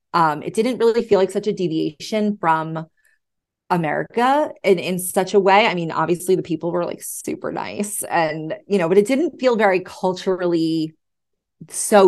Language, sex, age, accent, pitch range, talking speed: English, female, 30-49, American, 165-205 Hz, 175 wpm